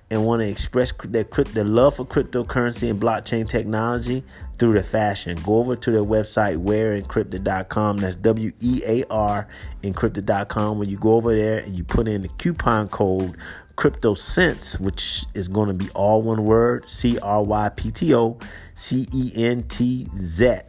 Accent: American